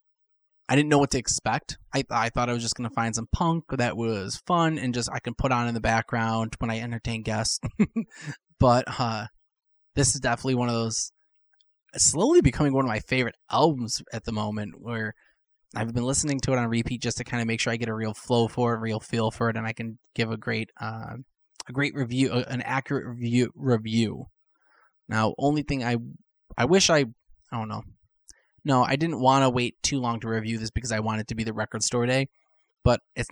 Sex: male